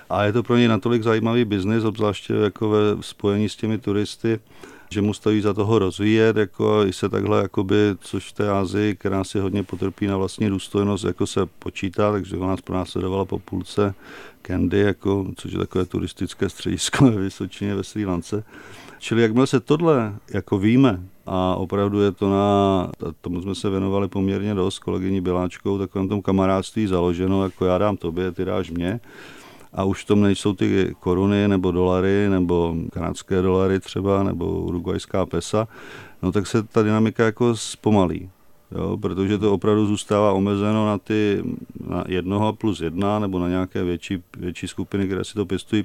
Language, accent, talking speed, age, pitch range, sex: Czech, native, 175 wpm, 40-59, 95-105 Hz, male